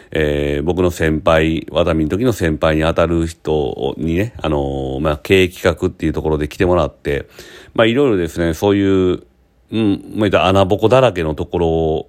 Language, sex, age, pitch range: Japanese, male, 40-59, 80-110 Hz